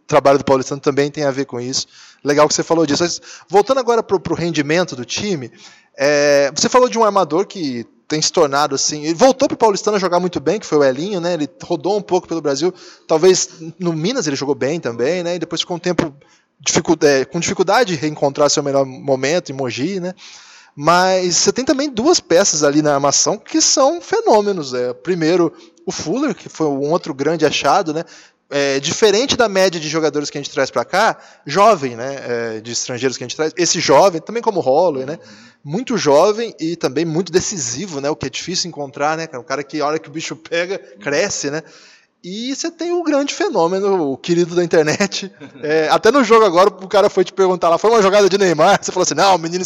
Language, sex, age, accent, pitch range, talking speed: Portuguese, male, 20-39, Brazilian, 150-200 Hz, 220 wpm